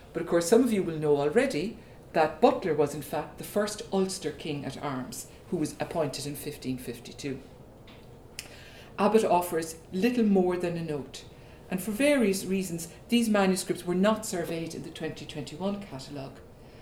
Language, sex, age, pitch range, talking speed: English, female, 60-79, 150-200 Hz, 160 wpm